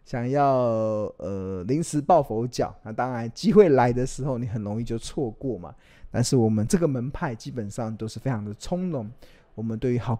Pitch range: 110-150 Hz